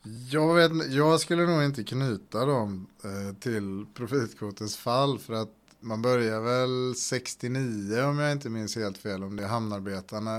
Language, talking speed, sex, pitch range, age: Swedish, 150 wpm, male, 105-125 Hz, 30-49